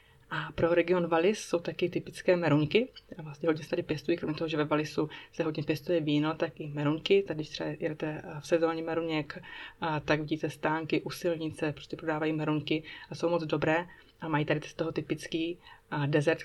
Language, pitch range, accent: Czech, 150-175 Hz, native